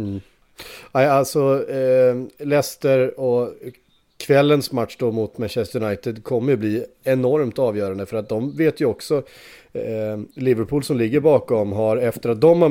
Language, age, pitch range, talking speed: Swedish, 30-49, 105-135 Hz, 150 wpm